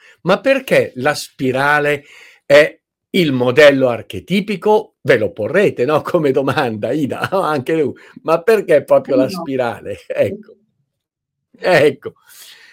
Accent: native